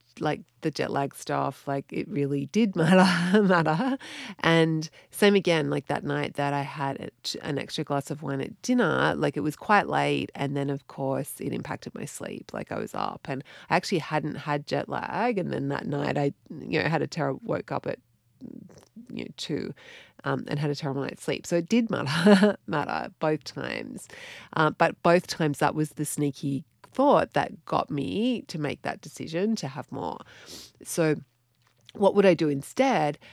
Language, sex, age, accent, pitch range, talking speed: English, female, 30-49, Australian, 145-205 Hz, 195 wpm